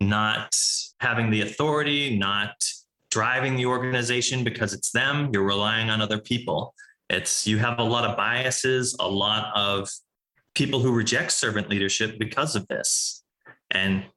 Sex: male